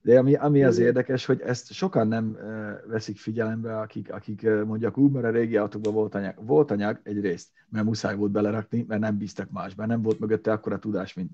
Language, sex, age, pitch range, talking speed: Hungarian, male, 30-49, 110-140 Hz, 210 wpm